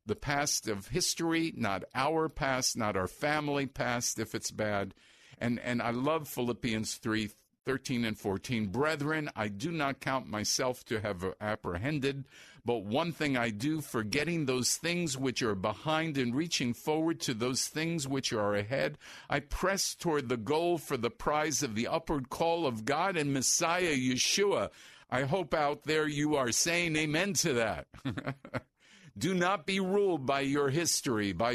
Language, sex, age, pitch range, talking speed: English, male, 50-69, 110-155 Hz, 165 wpm